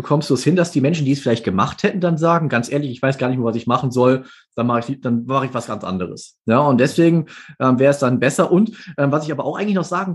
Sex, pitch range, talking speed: male, 135-195 Hz, 300 wpm